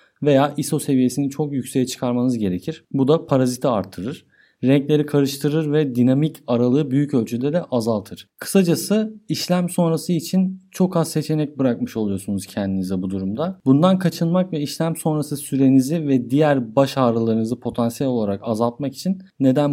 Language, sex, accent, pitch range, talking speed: Turkish, male, native, 120-160 Hz, 145 wpm